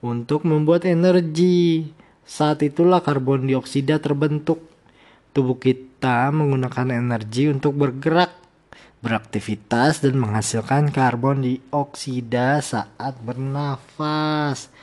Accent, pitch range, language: native, 130-165 Hz, Indonesian